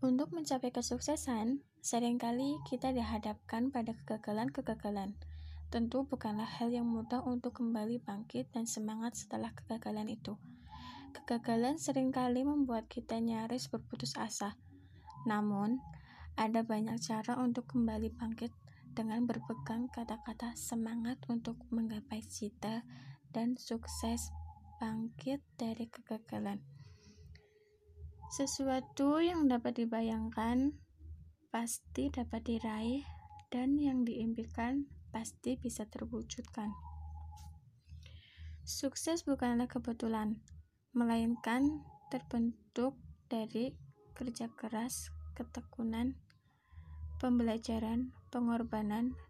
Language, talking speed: Indonesian, 85 wpm